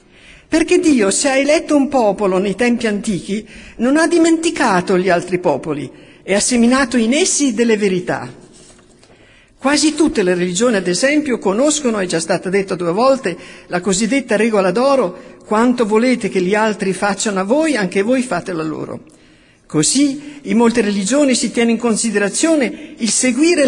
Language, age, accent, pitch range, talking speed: Italian, 50-69, native, 205-290 Hz, 160 wpm